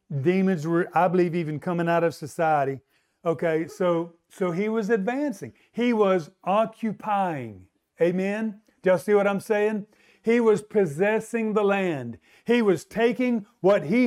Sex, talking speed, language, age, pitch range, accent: male, 150 wpm, English, 50-69, 185-245 Hz, American